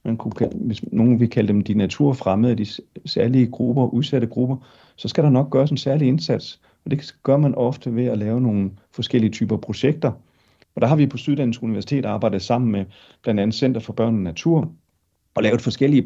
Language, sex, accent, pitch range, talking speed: Danish, male, native, 100-125 Hz, 195 wpm